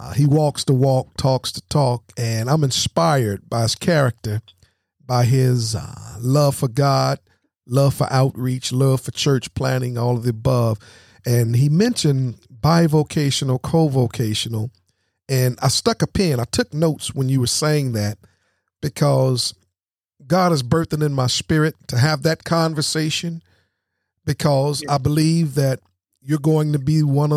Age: 50-69